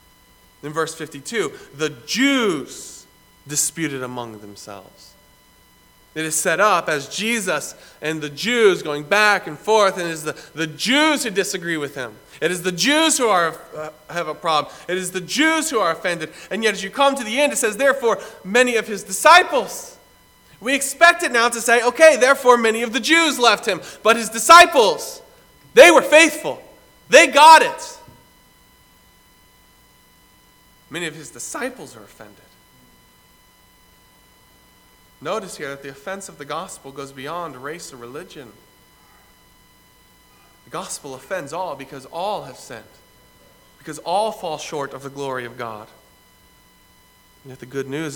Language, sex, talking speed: English, male, 160 wpm